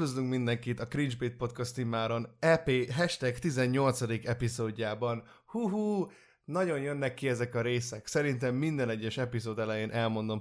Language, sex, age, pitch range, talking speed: Hungarian, male, 20-39, 115-140 Hz, 125 wpm